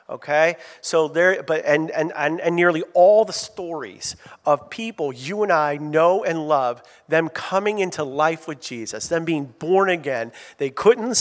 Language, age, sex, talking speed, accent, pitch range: English, 40-59, male, 165 wpm, American, 155-195 Hz